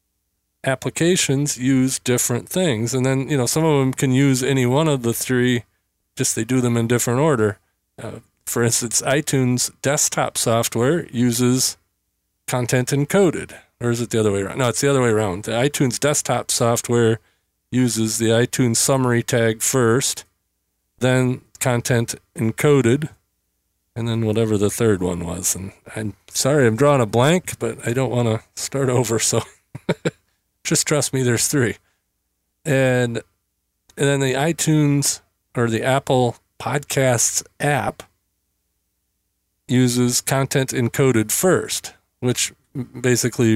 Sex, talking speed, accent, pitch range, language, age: male, 140 wpm, American, 110-135 Hz, English, 40-59